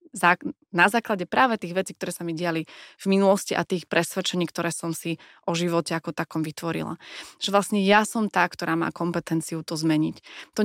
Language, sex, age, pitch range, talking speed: Slovak, female, 20-39, 170-190 Hz, 185 wpm